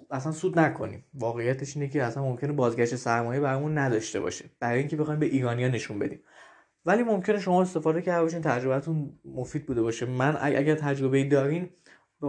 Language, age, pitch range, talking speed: Persian, 20-39, 130-165 Hz, 170 wpm